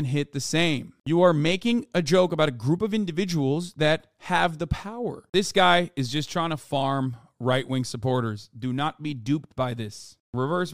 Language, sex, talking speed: English, male, 185 wpm